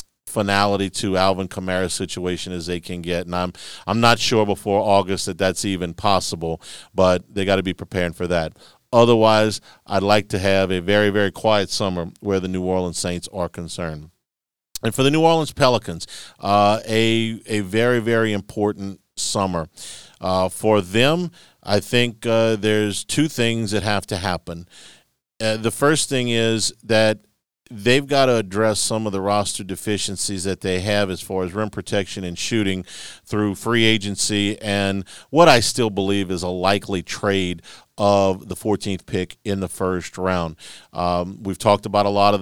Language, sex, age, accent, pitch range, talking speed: English, male, 50-69, American, 95-110 Hz, 175 wpm